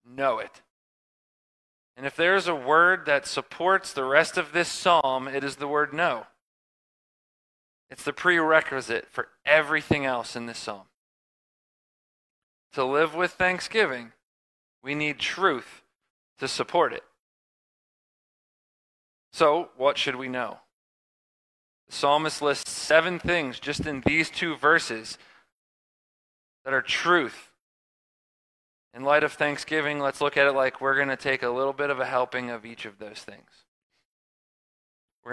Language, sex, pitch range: English, male, 125-160 Hz